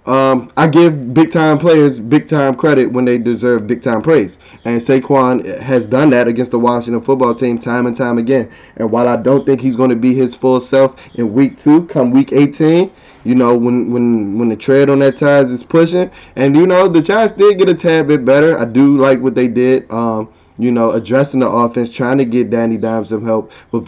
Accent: American